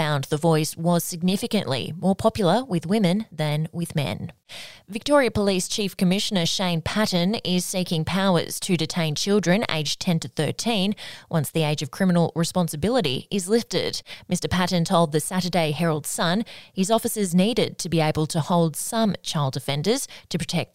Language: English